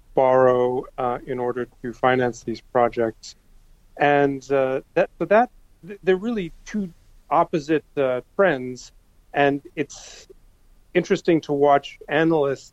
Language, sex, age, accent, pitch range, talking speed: English, male, 40-59, American, 120-145 Hz, 125 wpm